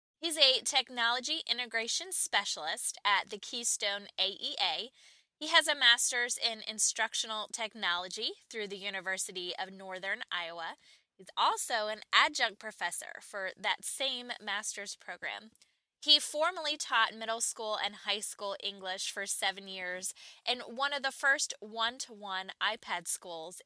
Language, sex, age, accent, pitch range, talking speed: English, female, 10-29, American, 200-265 Hz, 130 wpm